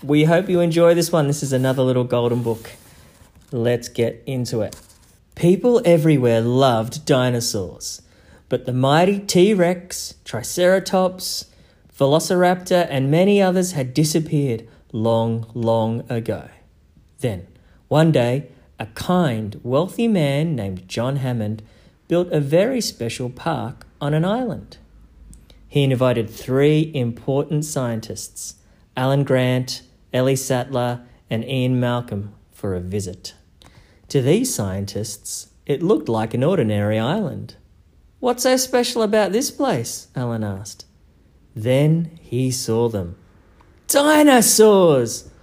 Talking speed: 120 wpm